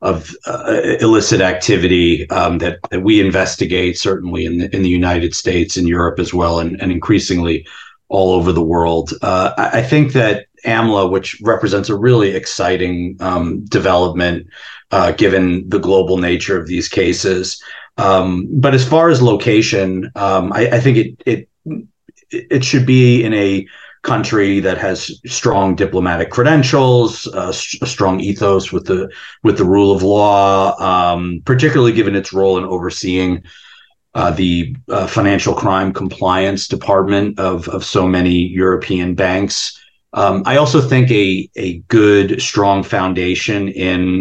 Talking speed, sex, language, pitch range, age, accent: 150 wpm, male, English, 90-105 Hz, 40-59, American